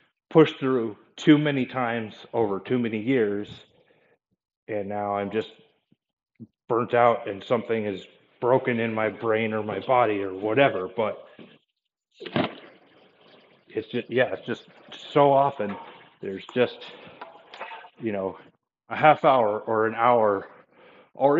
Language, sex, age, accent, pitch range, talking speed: English, male, 40-59, American, 105-125 Hz, 130 wpm